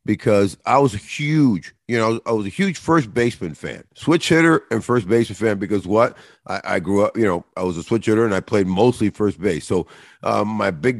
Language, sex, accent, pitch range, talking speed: English, male, American, 100-125 Hz, 235 wpm